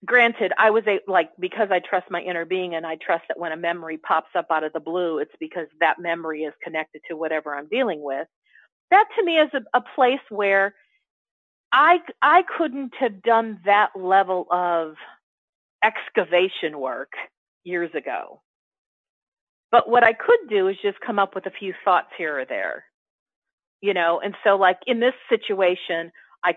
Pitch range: 170-235 Hz